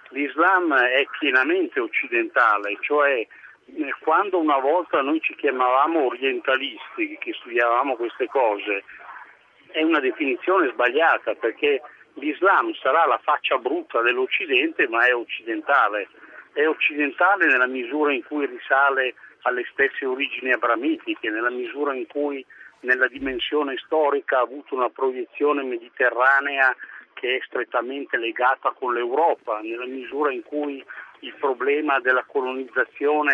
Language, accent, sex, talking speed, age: Italian, native, male, 120 wpm, 60-79